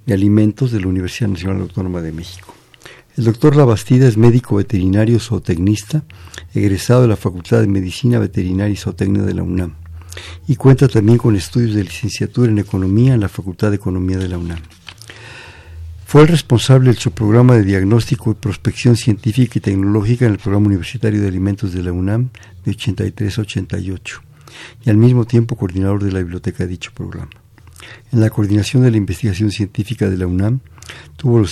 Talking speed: 180 wpm